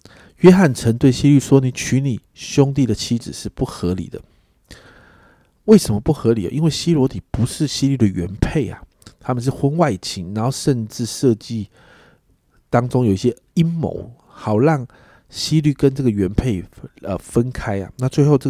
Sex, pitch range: male, 100-135 Hz